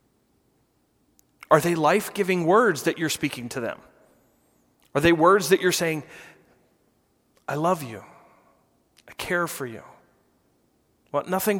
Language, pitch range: English, 135-175 Hz